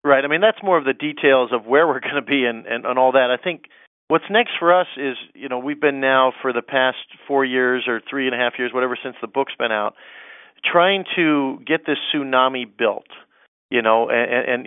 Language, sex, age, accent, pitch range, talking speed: English, male, 40-59, American, 125-150 Hz, 235 wpm